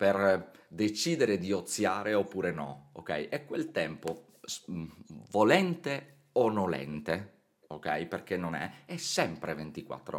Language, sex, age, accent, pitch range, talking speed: Italian, male, 30-49, native, 85-120 Hz, 120 wpm